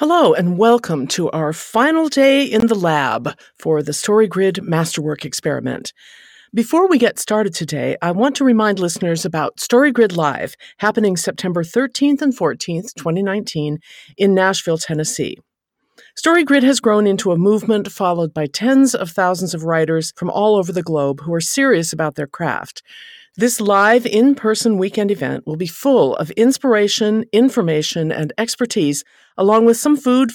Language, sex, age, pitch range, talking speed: English, female, 50-69, 165-235 Hz, 155 wpm